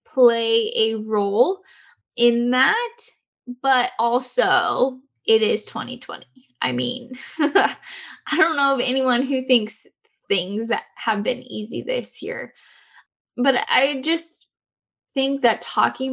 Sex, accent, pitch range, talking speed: female, American, 230-275 Hz, 120 wpm